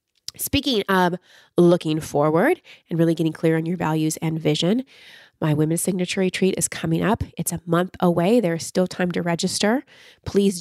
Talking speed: 175 wpm